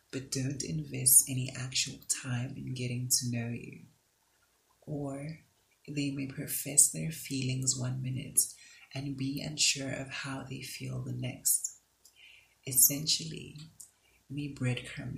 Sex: female